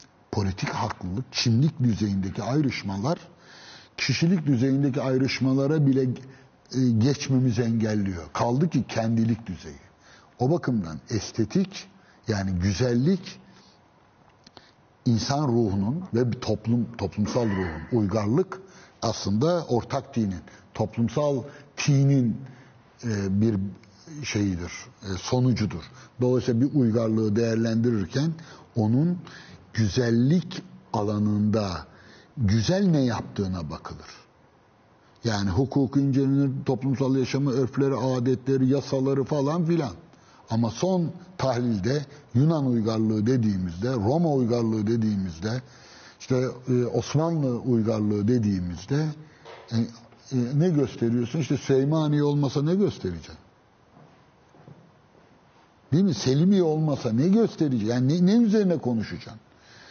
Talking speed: 90 wpm